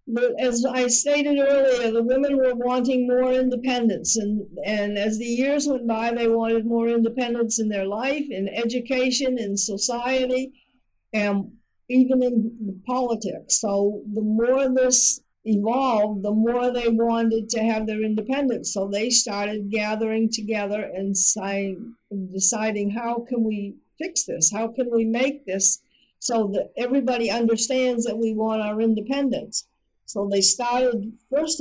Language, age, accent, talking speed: English, 60-79, American, 145 wpm